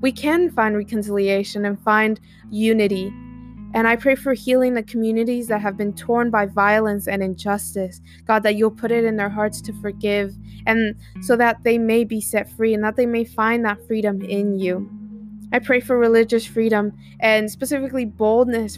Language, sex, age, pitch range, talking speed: English, female, 20-39, 205-230 Hz, 180 wpm